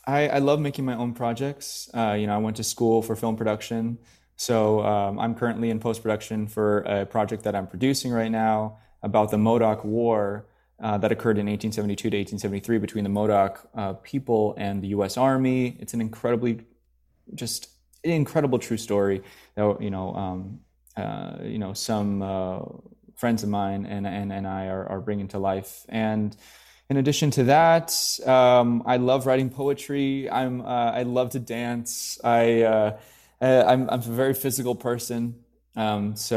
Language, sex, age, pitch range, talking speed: English, male, 20-39, 105-125 Hz, 175 wpm